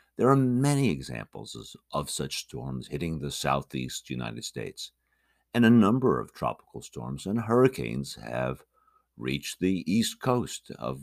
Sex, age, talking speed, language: male, 60-79, 140 wpm, English